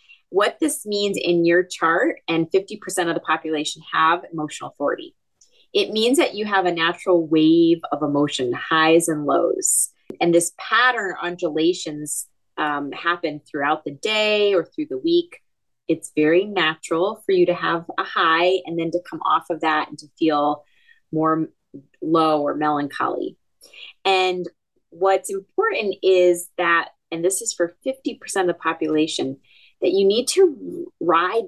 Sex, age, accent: female, 30-49, American